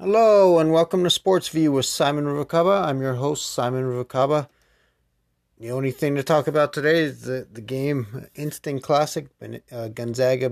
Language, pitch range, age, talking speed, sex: English, 105-130 Hz, 30-49, 165 wpm, male